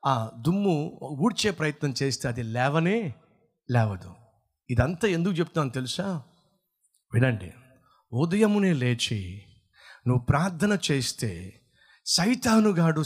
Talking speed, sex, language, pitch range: 85 wpm, male, Telugu, 140-235 Hz